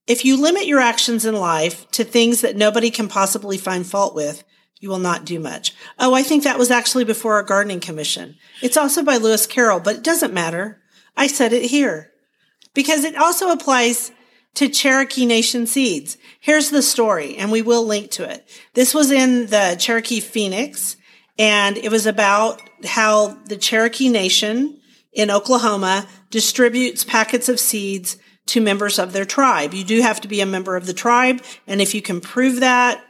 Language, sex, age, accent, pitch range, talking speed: English, female, 40-59, American, 200-250 Hz, 185 wpm